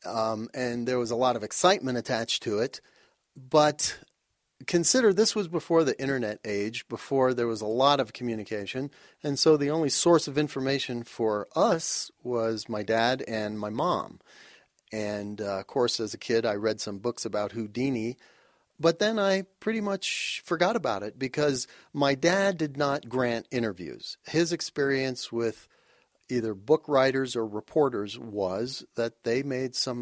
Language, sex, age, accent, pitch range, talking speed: English, male, 40-59, American, 115-150 Hz, 165 wpm